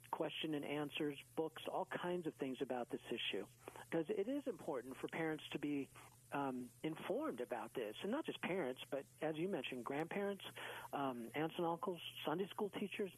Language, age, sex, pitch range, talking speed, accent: English, 50-69, male, 135-165 Hz, 180 wpm, American